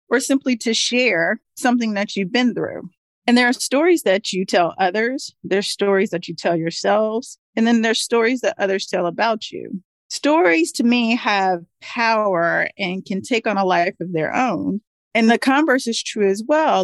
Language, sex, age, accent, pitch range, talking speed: English, female, 40-59, American, 180-235 Hz, 190 wpm